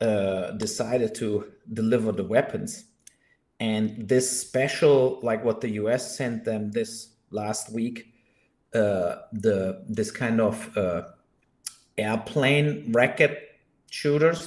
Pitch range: 110-140 Hz